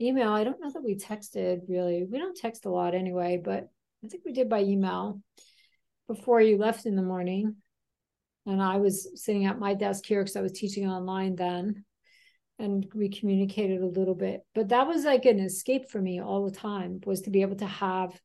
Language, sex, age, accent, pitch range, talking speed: English, female, 50-69, American, 190-230 Hz, 210 wpm